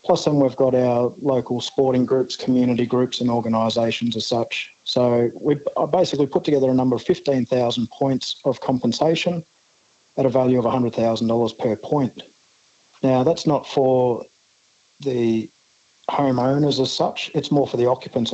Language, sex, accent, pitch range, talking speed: English, male, Australian, 120-140 Hz, 150 wpm